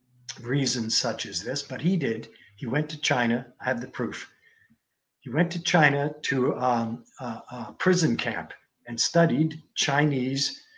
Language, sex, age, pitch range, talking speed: English, male, 60-79, 125-160 Hz, 155 wpm